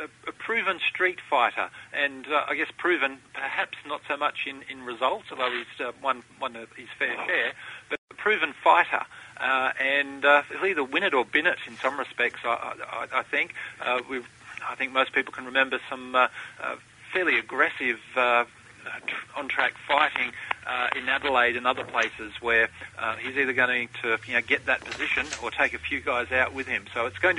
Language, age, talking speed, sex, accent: English, 40-59, 195 wpm, male, Australian